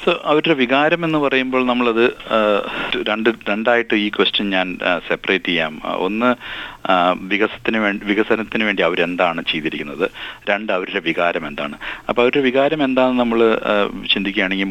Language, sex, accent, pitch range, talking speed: Malayalam, male, native, 95-120 Hz, 120 wpm